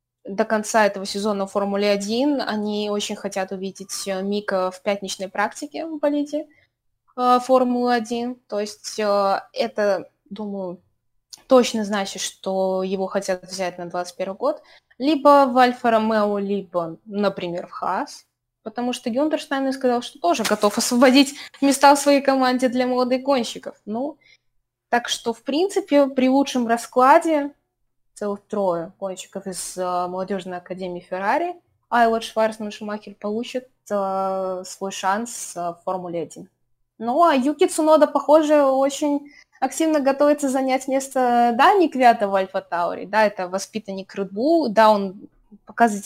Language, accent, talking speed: Russian, native, 130 wpm